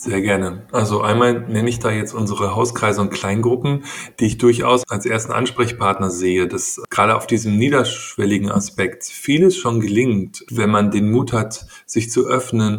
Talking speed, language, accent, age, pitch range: 170 wpm, German, German, 30-49, 105-120 Hz